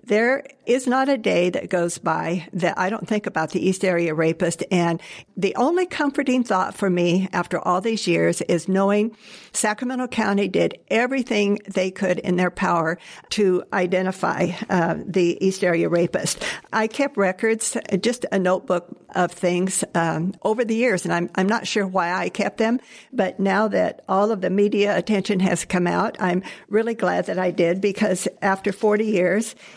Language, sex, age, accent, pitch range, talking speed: English, female, 60-79, American, 175-210 Hz, 175 wpm